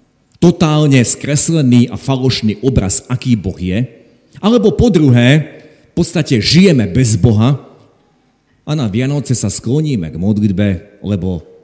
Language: Slovak